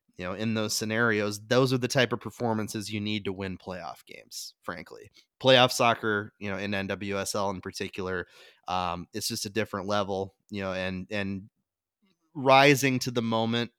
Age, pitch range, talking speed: 30-49, 100-115 Hz, 175 wpm